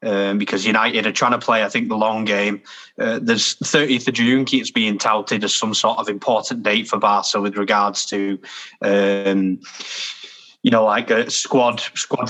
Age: 20-39